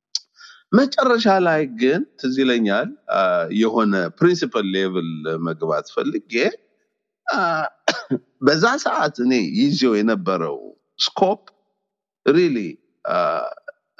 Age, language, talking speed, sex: 50-69, Amharic, 60 wpm, male